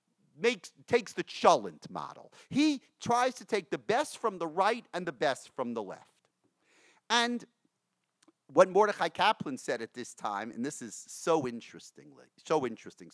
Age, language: 40-59, English